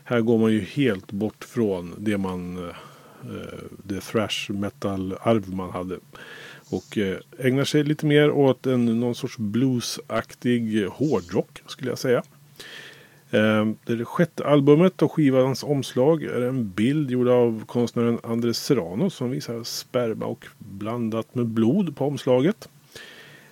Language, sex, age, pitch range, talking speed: Swedish, male, 30-49, 100-130 Hz, 135 wpm